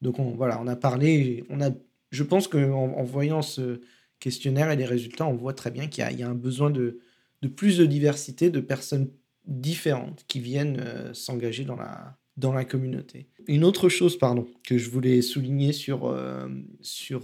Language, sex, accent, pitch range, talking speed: French, male, French, 125-150 Hz, 205 wpm